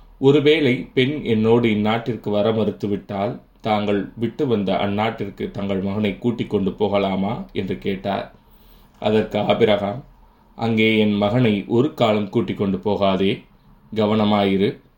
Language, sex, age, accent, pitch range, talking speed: Tamil, male, 20-39, native, 100-115 Hz, 110 wpm